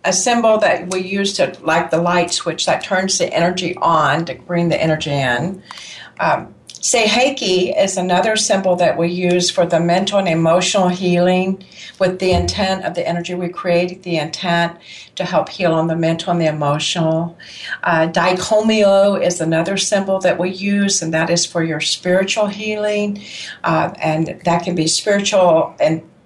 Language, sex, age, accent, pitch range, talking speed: English, female, 50-69, American, 170-200 Hz, 175 wpm